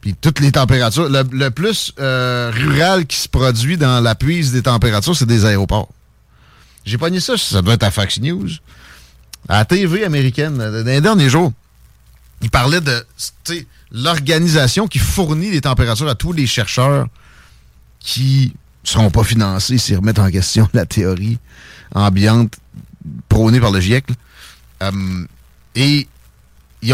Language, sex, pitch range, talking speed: French, male, 100-145 Hz, 150 wpm